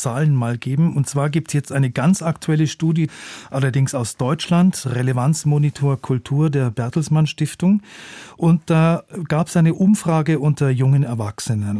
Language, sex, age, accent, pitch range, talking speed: German, male, 40-59, German, 130-165 Hz, 145 wpm